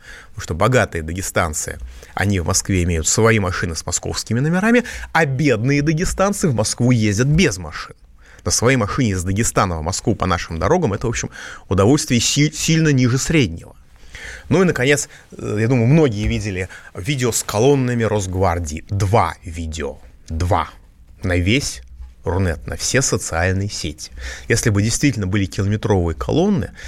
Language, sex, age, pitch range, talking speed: Russian, male, 30-49, 90-135 Hz, 145 wpm